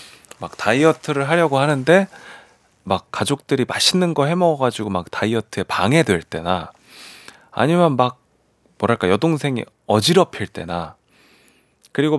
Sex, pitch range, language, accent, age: male, 100-155 Hz, Korean, native, 30-49